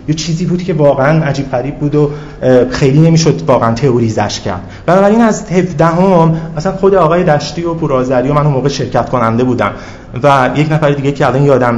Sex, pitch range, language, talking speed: male, 125-155 Hz, Persian, 195 wpm